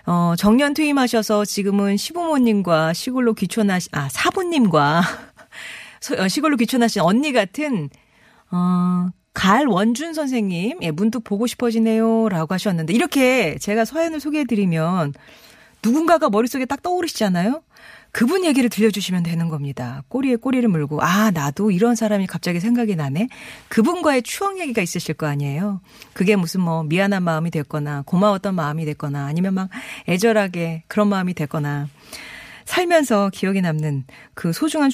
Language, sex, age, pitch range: Korean, female, 40-59, 165-235 Hz